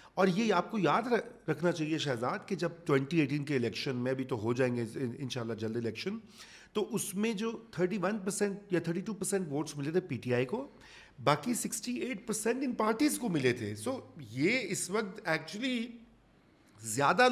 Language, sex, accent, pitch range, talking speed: English, male, Indian, 130-195 Hz, 155 wpm